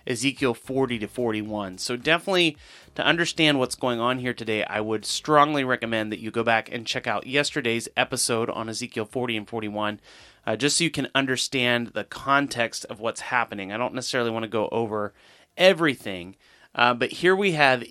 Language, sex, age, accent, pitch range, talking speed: English, male, 30-49, American, 110-140 Hz, 185 wpm